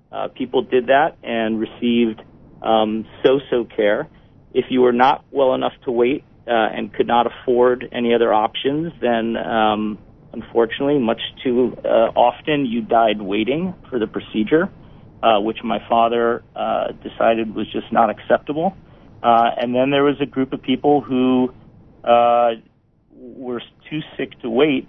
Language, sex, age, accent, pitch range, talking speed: English, male, 40-59, American, 110-125 Hz, 155 wpm